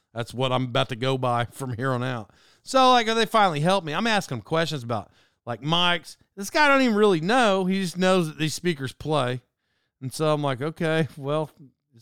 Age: 40-59